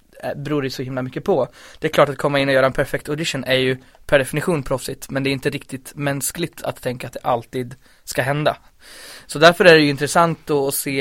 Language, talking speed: English, 235 wpm